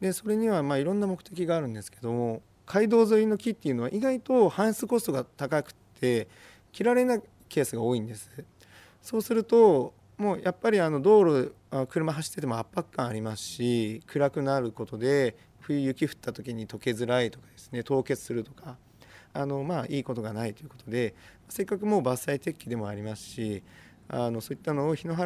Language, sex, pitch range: Japanese, male, 115-170 Hz